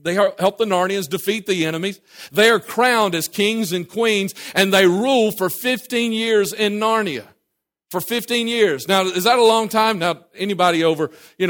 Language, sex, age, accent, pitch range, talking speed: English, male, 40-59, American, 165-215 Hz, 180 wpm